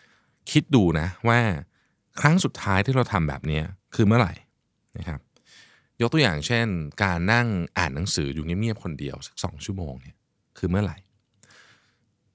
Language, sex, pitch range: Thai, male, 80-120 Hz